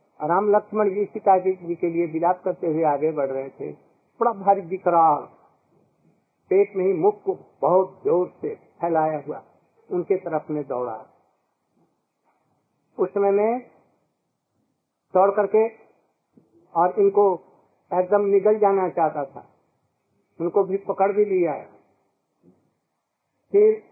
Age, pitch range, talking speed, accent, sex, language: 60-79, 170-210 Hz, 125 wpm, native, male, Hindi